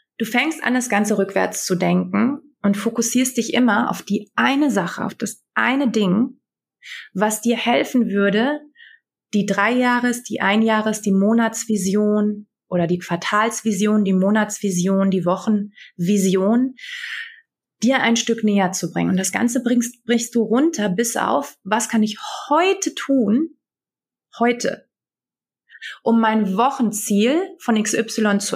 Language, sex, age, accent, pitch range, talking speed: German, female, 30-49, German, 200-245 Hz, 135 wpm